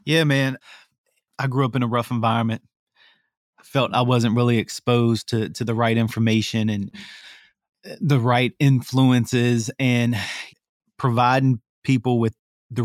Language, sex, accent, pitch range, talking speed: English, male, American, 110-125 Hz, 135 wpm